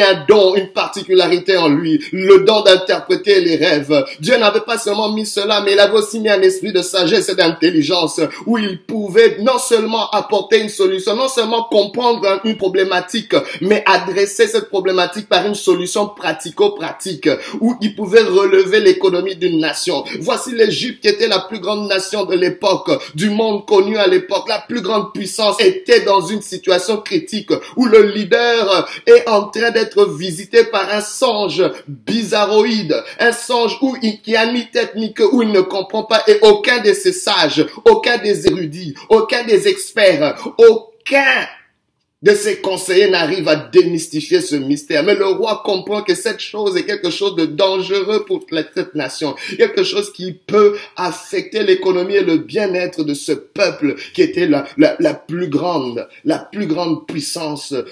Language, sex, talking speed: French, male, 170 wpm